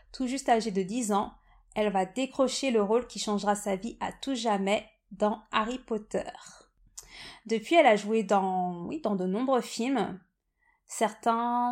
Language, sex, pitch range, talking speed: French, female, 200-240 Hz, 165 wpm